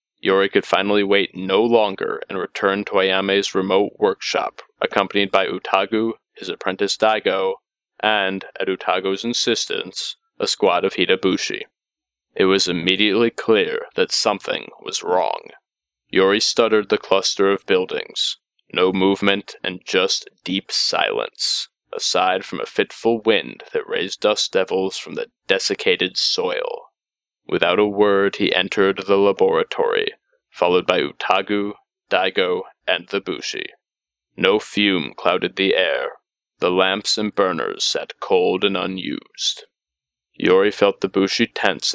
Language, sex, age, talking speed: English, male, 20-39, 130 wpm